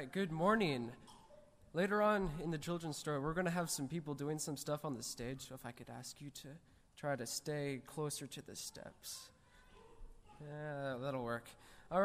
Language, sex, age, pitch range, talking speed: English, male, 20-39, 140-180 Hz, 190 wpm